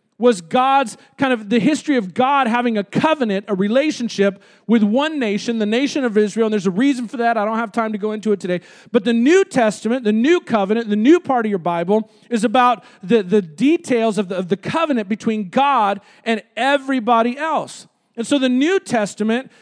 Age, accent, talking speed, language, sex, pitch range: 40-59, American, 205 wpm, English, male, 220-275 Hz